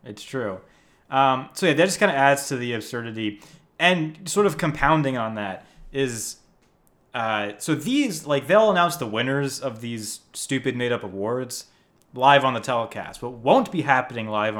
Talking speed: 175 wpm